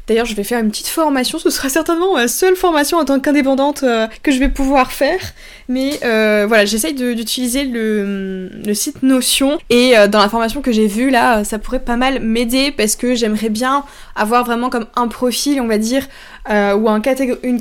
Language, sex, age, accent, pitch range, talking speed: French, female, 20-39, French, 220-265 Hz, 200 wpm